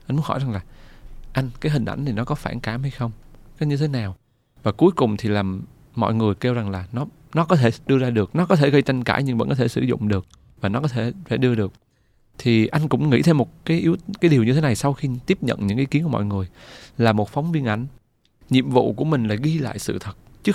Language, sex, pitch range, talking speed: Vietnamese, male, 110-145 Hz, 275 wpm